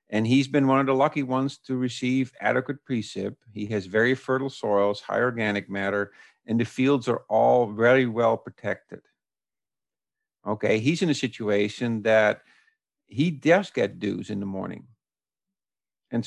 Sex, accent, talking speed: male, American, 155 wpm